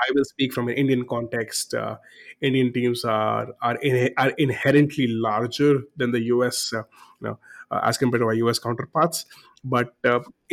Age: 30-49